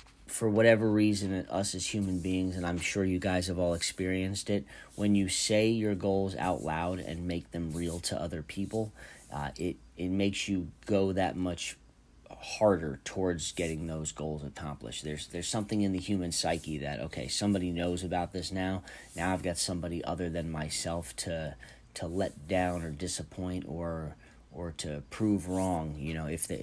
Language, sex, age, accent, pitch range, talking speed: English, male, 30-49, American, 80-100 Hz, 180 wpm